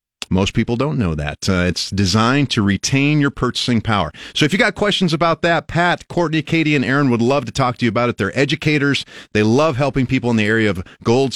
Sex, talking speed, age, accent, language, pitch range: male, 230 wpm, 40-59, American, English, 105-150 Hz